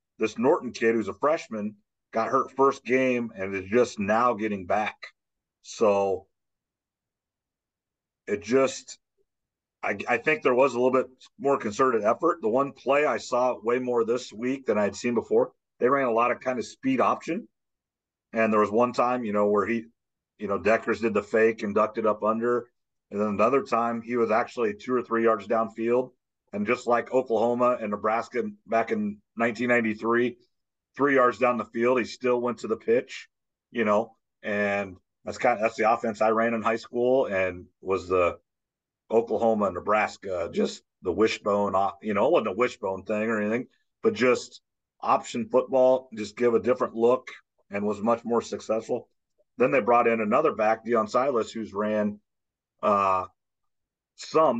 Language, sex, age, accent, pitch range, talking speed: English, male, 40-59, American, 105-125 Hz, 175 wpm